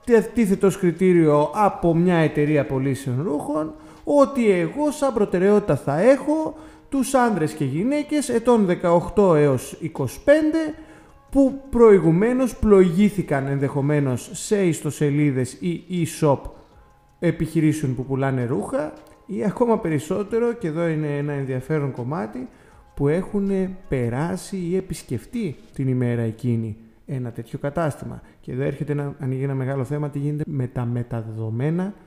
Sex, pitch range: male, 140-210 Hz